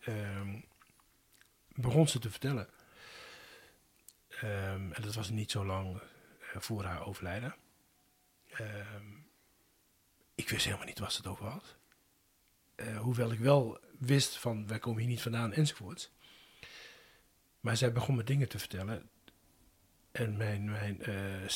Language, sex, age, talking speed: Dutch, male, 40-59, 135 wpm